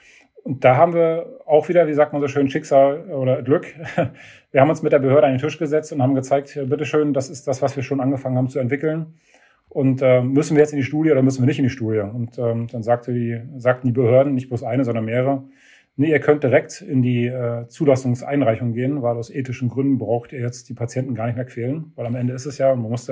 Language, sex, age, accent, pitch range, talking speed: German, male, 40-59, German, 125-145 Hz, 255 wpm